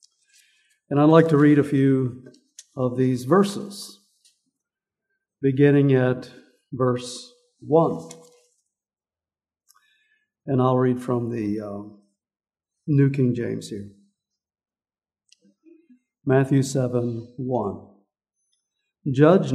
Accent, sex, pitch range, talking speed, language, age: American, male, 135-180 Hz, 85 wpm, English, 60-79